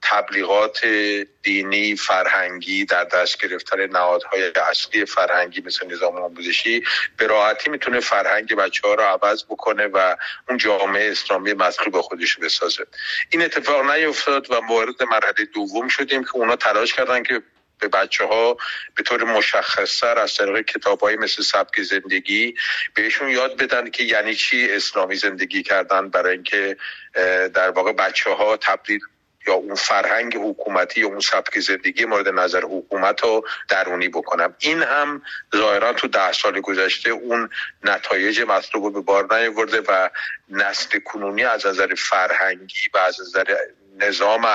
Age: 50-69